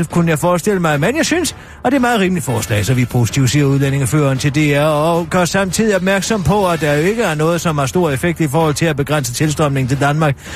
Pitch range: 150-195 Hz